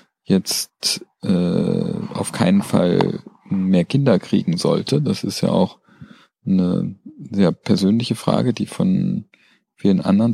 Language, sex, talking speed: German, male, 120 wpm